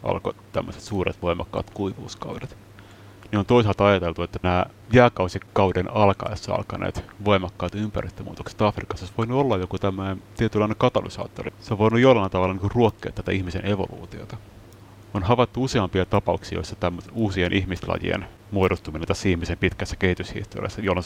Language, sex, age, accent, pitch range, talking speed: Finnish, male, 30-49, native, 95-110 Hz, 135 wpm